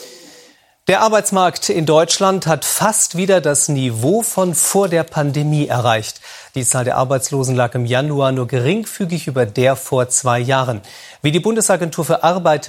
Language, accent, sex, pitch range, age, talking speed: German, German, male, 125-165 Hz, 40-59, 155 wpm